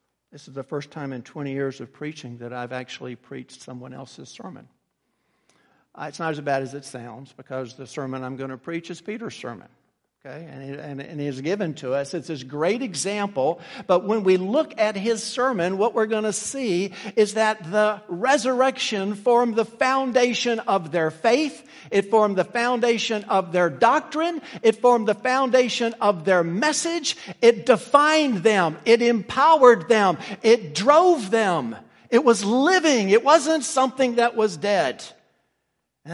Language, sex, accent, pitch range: English, male, American, 140-230 Hz